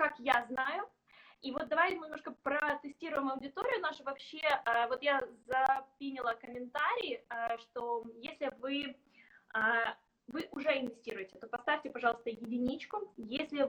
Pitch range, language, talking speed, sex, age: 240-295 Hz, Russian, 120 wpm, female, 20-39